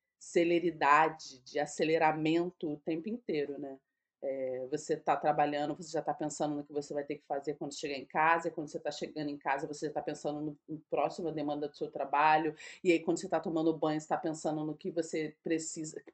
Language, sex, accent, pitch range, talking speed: Portuguese, female, Brazilian, 155-190 Hz, 215 wpm